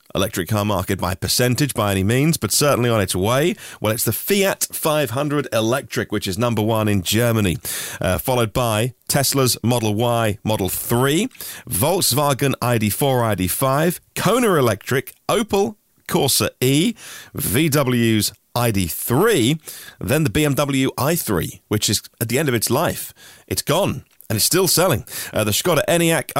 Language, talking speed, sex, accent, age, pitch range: English, 155 wpm, male, British, 40-59, 100-135 Hz